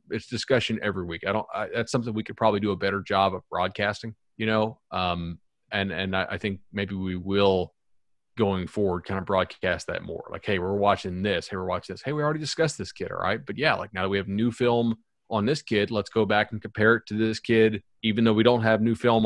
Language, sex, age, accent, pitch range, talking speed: English, male, 30-49, American, 95-115 Hz, 250 wpm